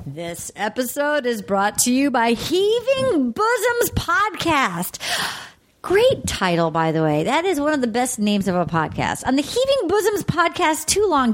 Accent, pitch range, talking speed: American, 220-325 Hz, 170 wpm